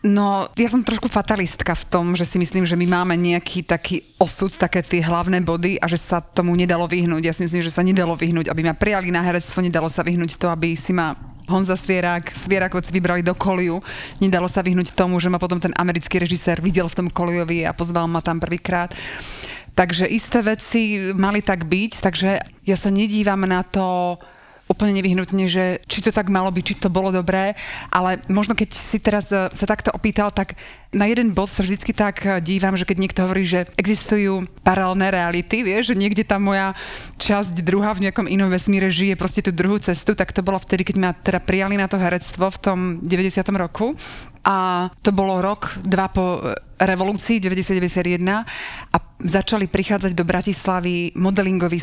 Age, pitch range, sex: 30-49, 175-195 Hz, female